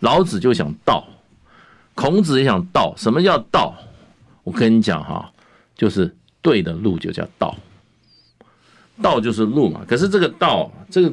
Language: Chinese